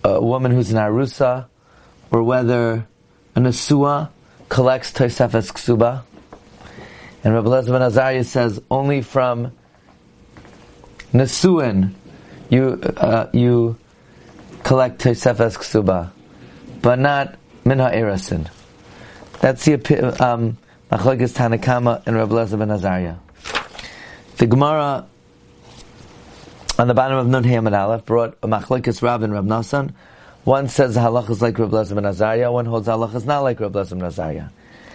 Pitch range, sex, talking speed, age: 115-135 Hz, male, 115 wpm, 30-49